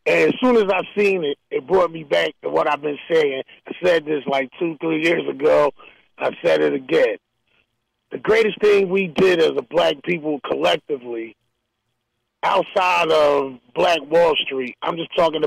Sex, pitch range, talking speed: male, 145-225 Hz, 180 wpm